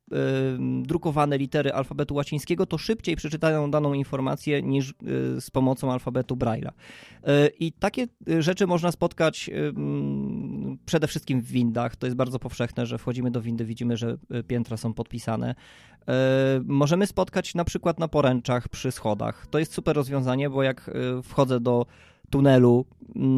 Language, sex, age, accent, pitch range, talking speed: Polish, male, 20-39, native, 125-155 Hz, 135 wpm